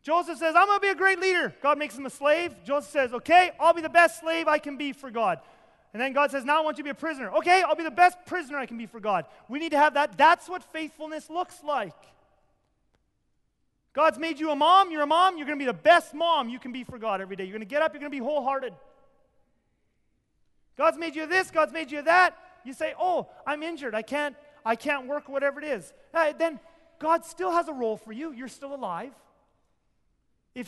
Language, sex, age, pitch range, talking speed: English, male, 30-49, 260-330 Hz, 245 wpm